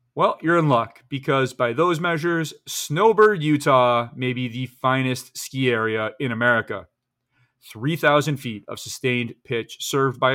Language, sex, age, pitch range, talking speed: English, male, 30-49, 120-145 Hz, 145 wpm